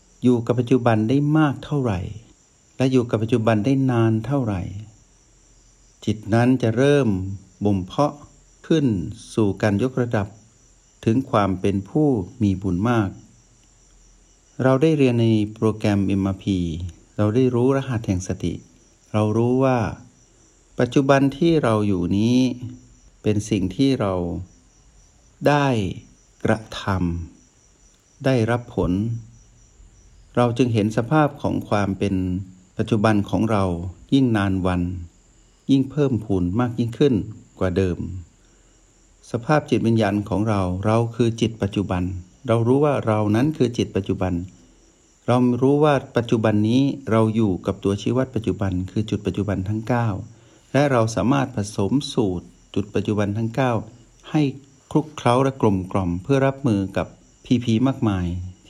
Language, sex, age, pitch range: Thai, male, 60-79, 95-125 Hz